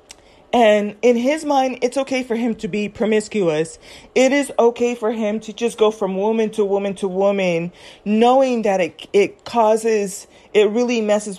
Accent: American